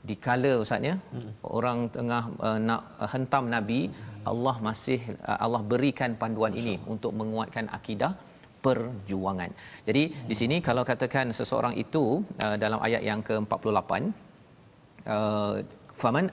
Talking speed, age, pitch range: 125 wpm, 40-59, 105-130 Hz